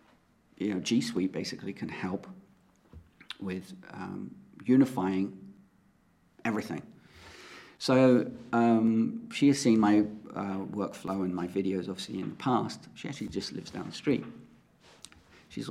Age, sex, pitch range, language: 50-69, male, 105-135 Hz, English